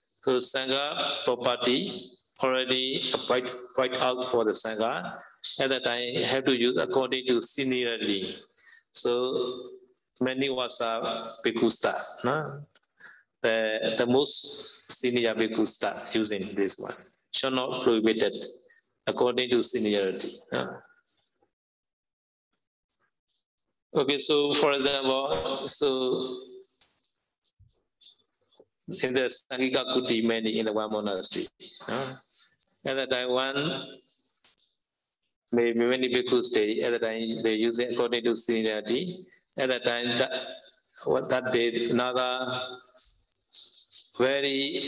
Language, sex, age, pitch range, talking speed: Vietnamese, male, 50-69, 115-140 Hz, 105 wpm